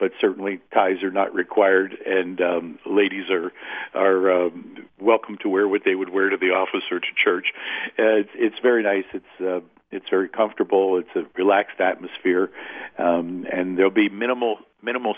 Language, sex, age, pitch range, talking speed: English, male, 50-69, 90-120 Hz, 180 wpm